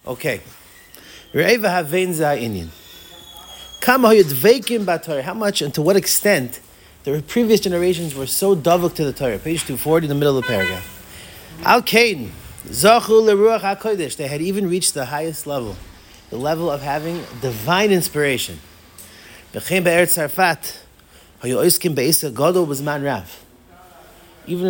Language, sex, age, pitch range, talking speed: English, male, 30-49, 135-190 Hz, 105 wpm